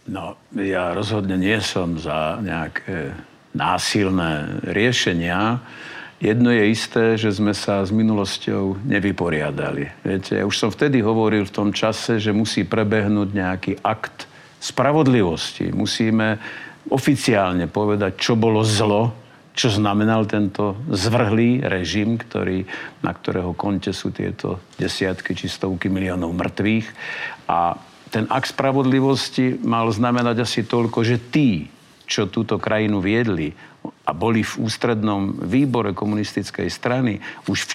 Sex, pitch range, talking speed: male, 100-120 Hz, 125 wpm